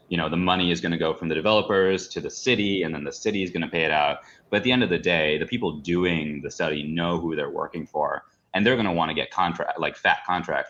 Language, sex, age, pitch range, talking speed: English, male, 30-49, 80-100 Hz, 280 wpm